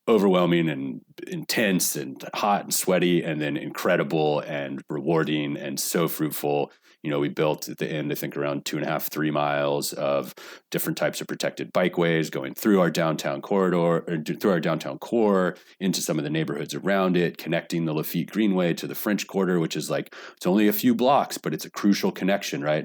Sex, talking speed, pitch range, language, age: male, 200 wpm, 75-90 Hz, English, 30-49